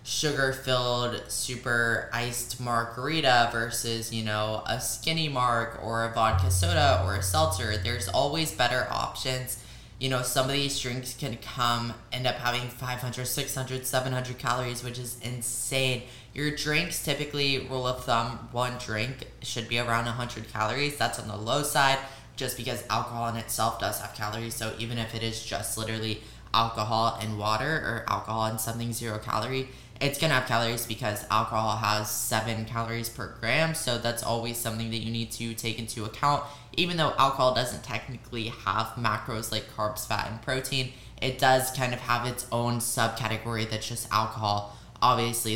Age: 20-39